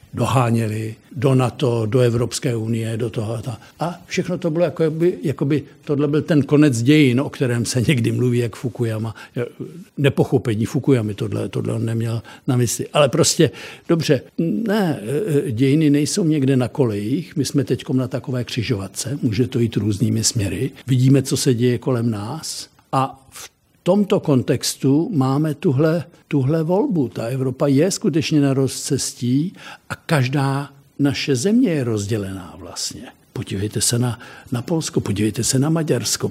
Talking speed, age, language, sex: 155 wpm, 60-79, Slovak, male